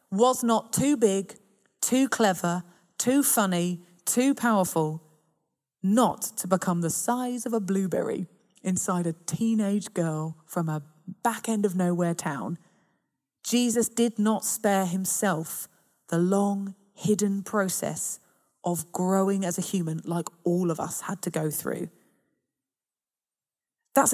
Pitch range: 175-220 Hz